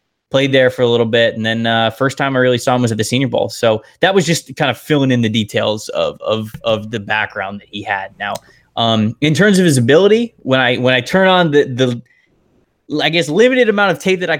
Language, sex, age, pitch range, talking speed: English, male, 20-39, 120-170 Hz, 255 wpm